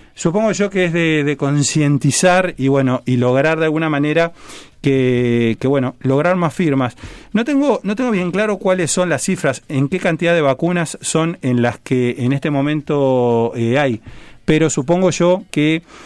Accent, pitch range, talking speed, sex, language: Argentinian, 125-170 Hz, 180 wpm, male, Spanish